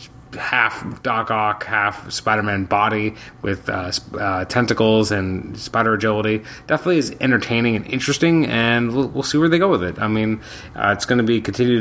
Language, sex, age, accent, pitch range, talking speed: English, male, 30-49, American, 105-135 Hz, 180 wpm